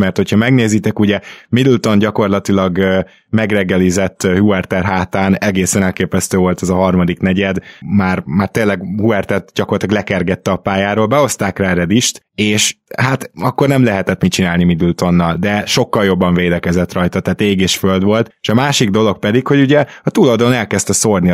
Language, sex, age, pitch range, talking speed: Hungarian, male, 20-39, 95-110 Hz, 155 wpm